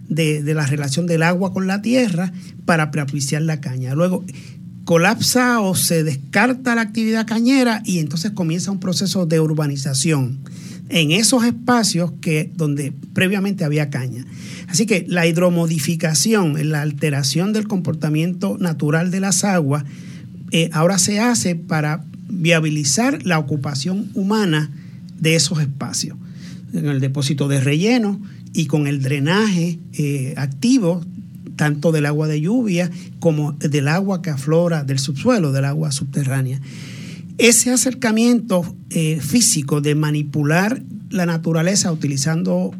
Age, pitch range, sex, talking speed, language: 50-69, 150-185 Hz, male, 130 wpm, Spanish